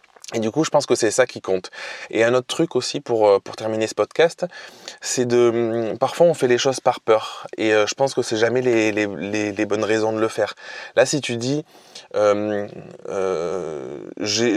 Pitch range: 110-135 Hz